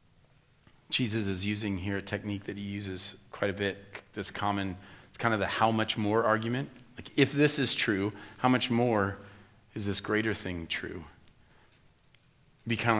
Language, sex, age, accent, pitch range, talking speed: English, male, 40-59, American, 100-120 Hz, 180 wpm